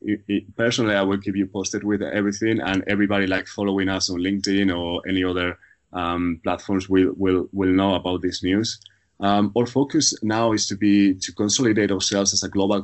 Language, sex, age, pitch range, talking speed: English, male, 30-49, 95-110 Hz, 195 wpm